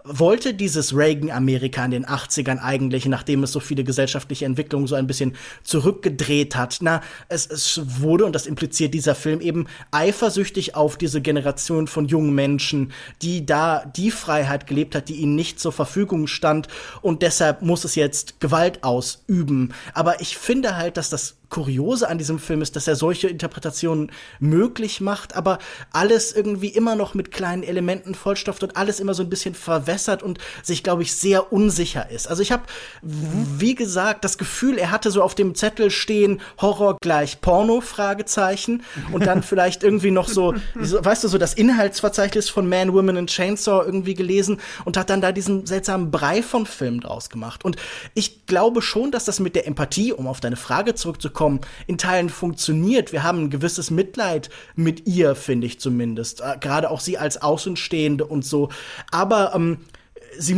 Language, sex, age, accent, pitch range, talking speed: German, male, 20-39, German, 150-195 Hz, 175 wpm